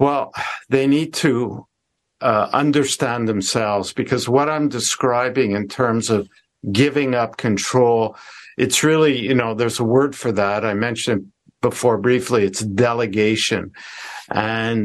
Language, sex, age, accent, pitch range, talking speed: English, male, 50-69, American, 115-140 Hz, 135 wpm